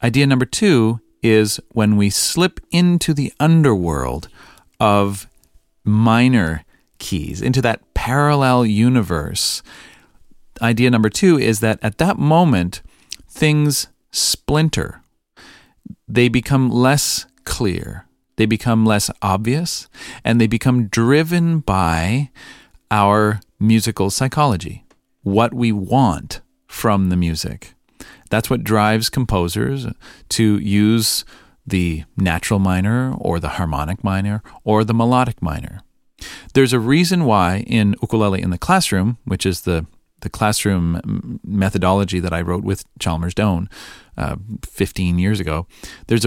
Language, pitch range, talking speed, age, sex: English, 95-125 Hz, 120 wpm, 40-59, male